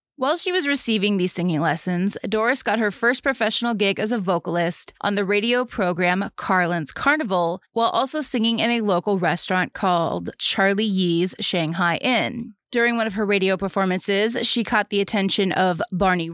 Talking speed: 170 wpm